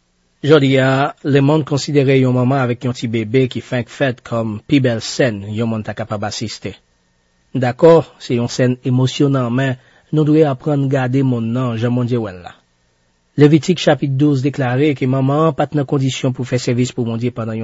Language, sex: French, male